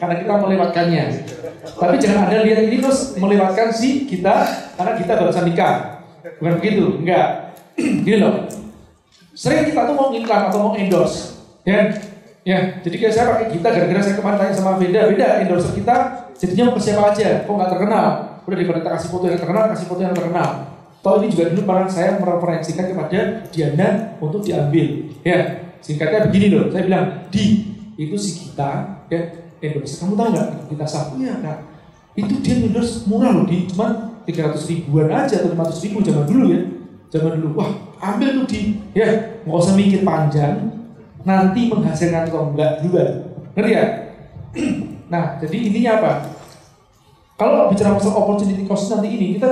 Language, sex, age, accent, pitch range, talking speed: Indonesian, male, 30-49, native, 170-220 Hz, 170 wpm